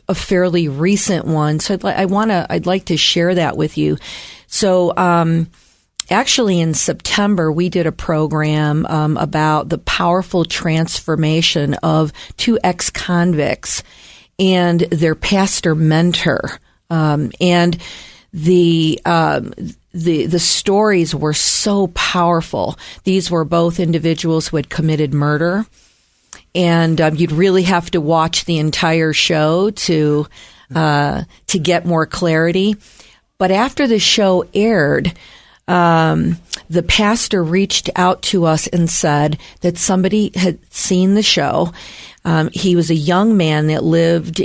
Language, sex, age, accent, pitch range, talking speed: English, female, 40-59, American, 160-185 Hz, 135 wpm